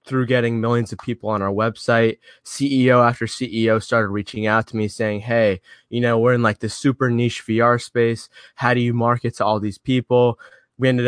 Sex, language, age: male, English, 20-39